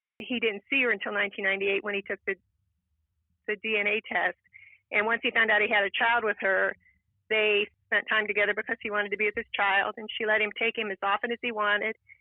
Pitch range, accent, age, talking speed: 190-220 Hz, American, 40-59, 230 wpm